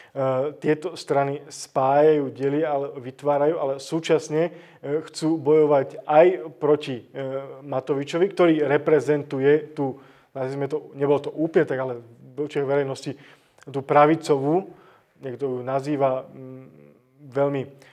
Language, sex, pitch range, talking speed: Slovak, male, 135-155 Hz, 95 wpm